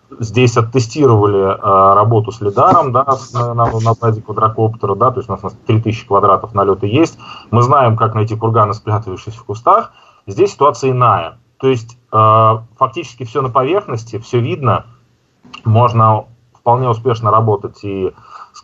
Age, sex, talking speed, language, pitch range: 30-49, male, 155 wpm, Russian, 105-125 Hz